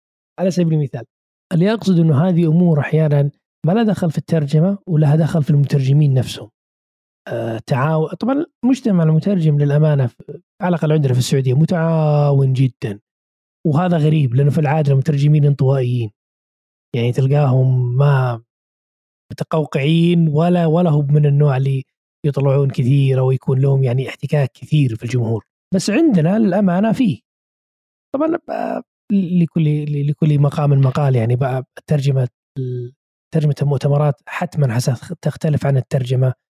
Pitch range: 130-175 Hz